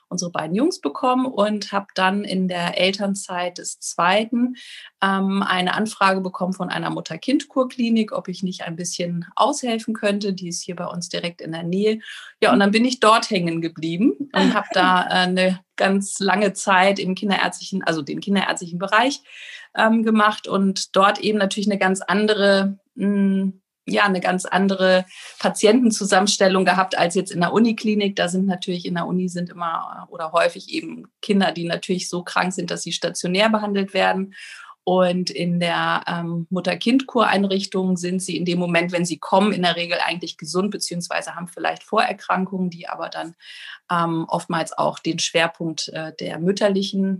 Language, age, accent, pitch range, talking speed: German, 30-49, German, 180-210 Hz, 170 wpm